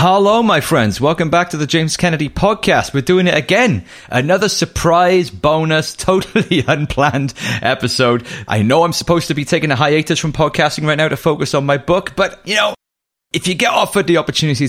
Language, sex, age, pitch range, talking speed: English, male, 30-49, 125-175 Hz, 190 wpm